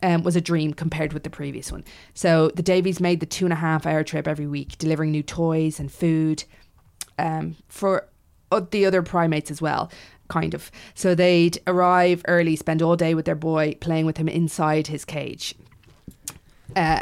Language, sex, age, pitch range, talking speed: English, female, 20-39, 155-180 Hz, 185 wpm